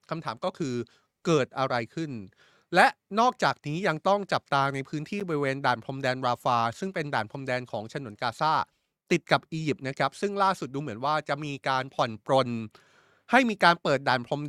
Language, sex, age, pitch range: Thai, male, 20-39, 130-175 Hz